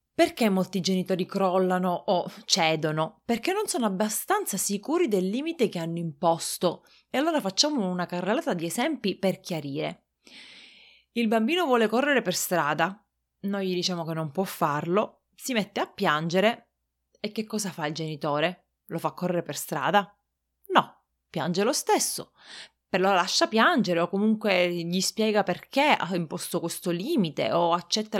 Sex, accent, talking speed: female, native, 150 wpm